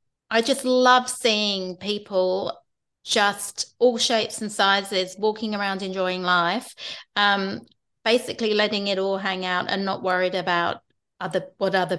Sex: female